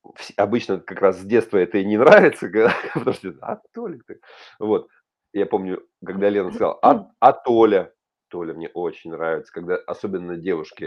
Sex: male